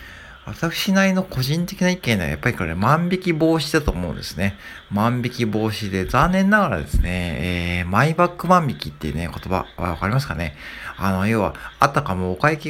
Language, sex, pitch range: Japanese, male, 85-125 Hz